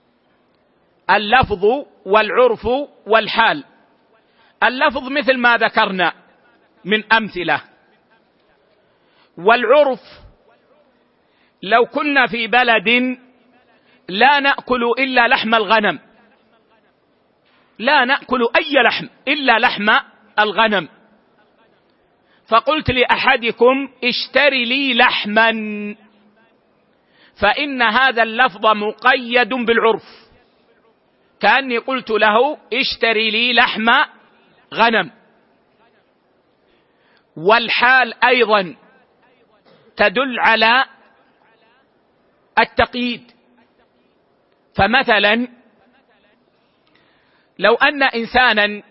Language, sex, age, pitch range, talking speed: Arabic, male, 50-69, 220-255 Hz, 65 wpm